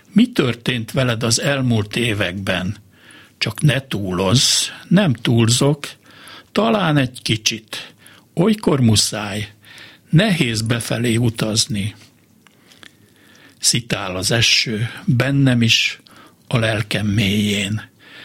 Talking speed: 90 wpm